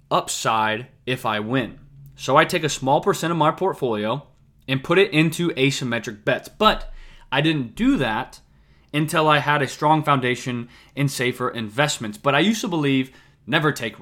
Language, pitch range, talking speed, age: English, 125-165 Hz, 170 wpm, 20-39